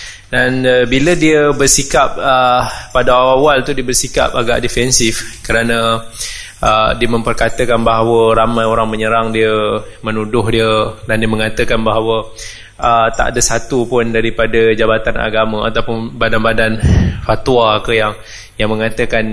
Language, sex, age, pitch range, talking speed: Malay, male, 20-39, 110-130 Hz, 135 wpm